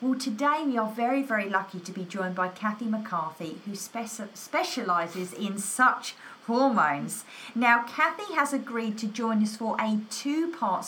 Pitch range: 185-240 Hz